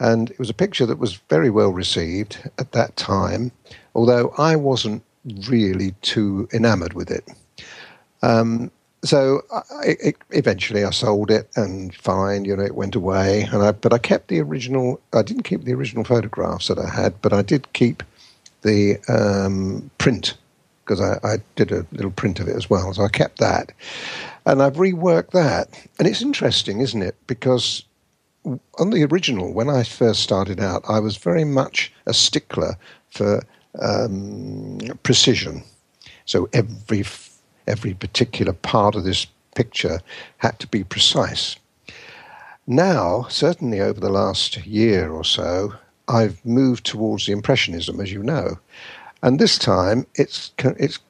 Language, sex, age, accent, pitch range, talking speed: English, male, 50-69, British, 100-130 Hz, 160 wpm